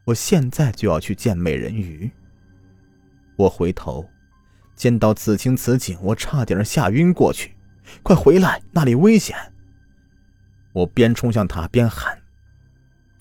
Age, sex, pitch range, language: 30-49, male, 85-105 Hz, Chinese